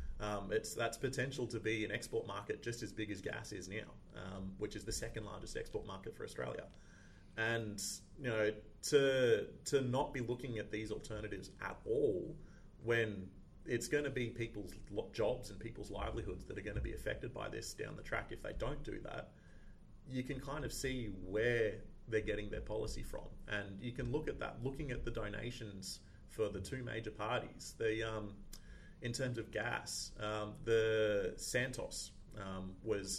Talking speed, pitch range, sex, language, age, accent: 185 wpm, 105-120 Hz, male, English, 30-49, Australian